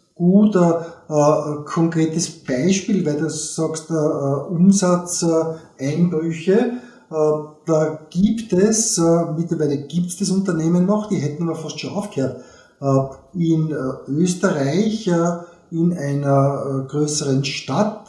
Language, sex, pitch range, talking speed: German, male, 150-185 Hz, 120 wpm